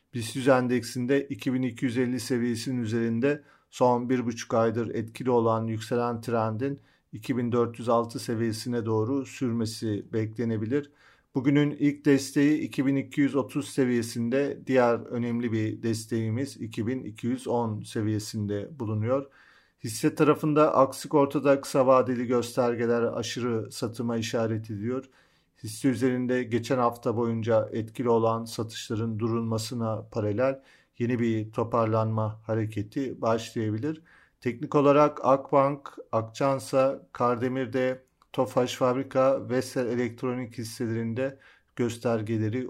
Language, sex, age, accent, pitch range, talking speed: Turkish, male, 40-59, native, 115-130 Hz, 95 wpm